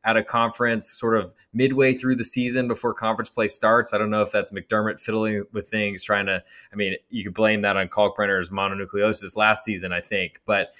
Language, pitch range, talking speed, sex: English, 100-115 Hz, 215 wpm, male